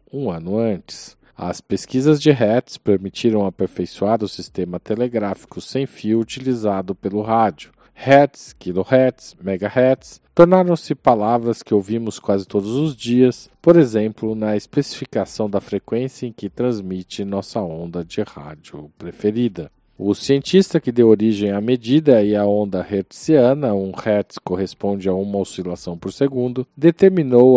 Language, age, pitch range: Portuguese, 40-59, 95-130 Hz